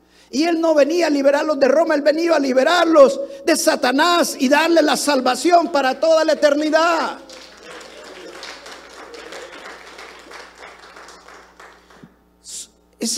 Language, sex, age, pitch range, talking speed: Spanish, male, 50-69, 275-325 Hz, 105 wpm